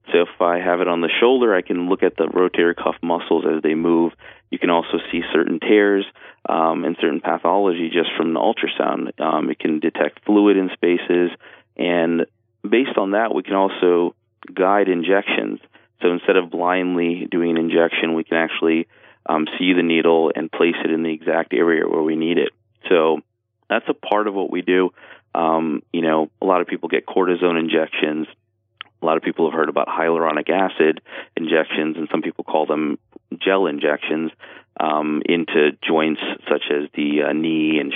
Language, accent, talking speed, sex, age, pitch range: English, American, 185 wpm, male, 30-49, 80-90 Hz